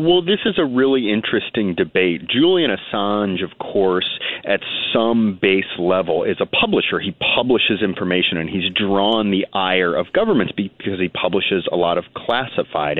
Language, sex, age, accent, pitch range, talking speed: English, male, 30-49, American, 90-120 Hz, 160 wpm